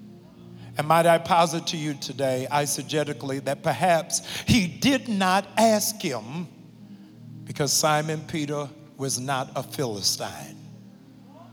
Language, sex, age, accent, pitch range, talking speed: English, male, 50-69, American, 170-240 Hz, 115 wpm